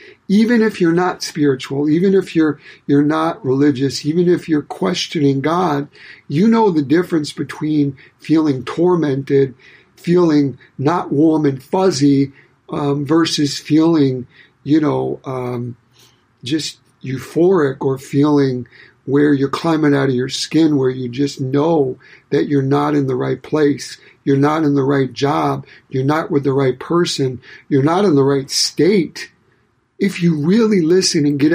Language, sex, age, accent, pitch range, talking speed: English, male, 50-69, American, 140-170 Hz, 150 wpm